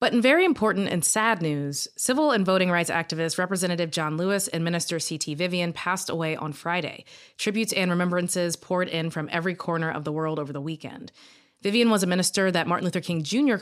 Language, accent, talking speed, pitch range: English, American, 205 wpm, 160-190 Hz